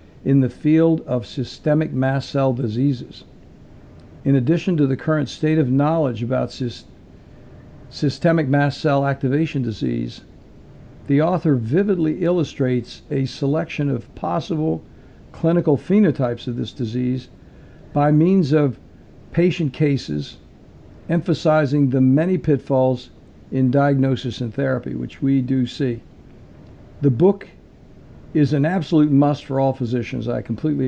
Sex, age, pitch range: male, 60-79, 125-150 Hz